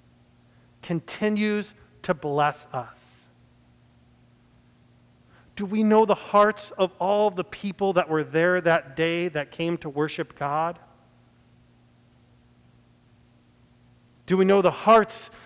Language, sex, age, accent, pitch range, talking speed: English, male, 40-59, American, 130-200 Hz, 110 wpm